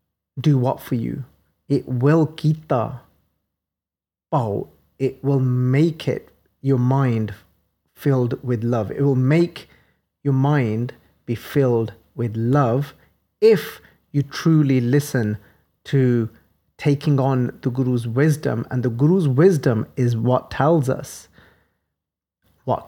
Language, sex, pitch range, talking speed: English, male, 100-145 Hz, 115 wpm